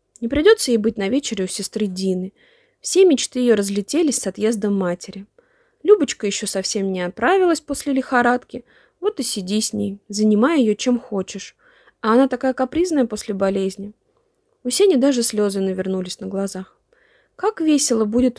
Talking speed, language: 155 wpm, Russian